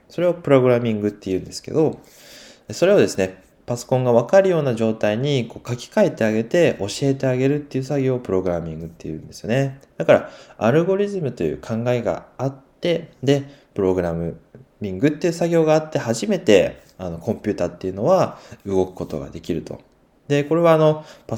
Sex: male